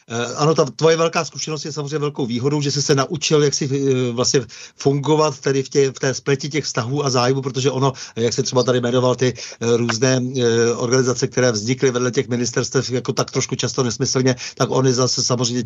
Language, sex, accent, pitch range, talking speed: Czech, male, native, 120-135 Hz, 195 wpm